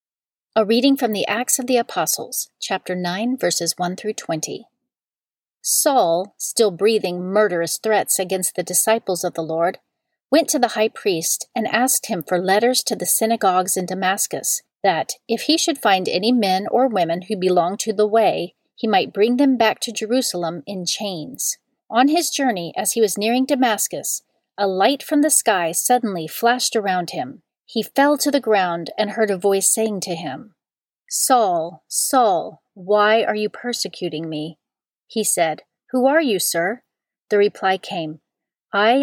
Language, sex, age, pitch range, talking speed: English, female, 40-59, 185-240 Hz, 170 wpm